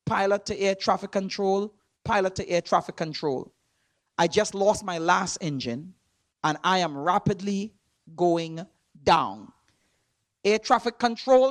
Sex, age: male, 40-59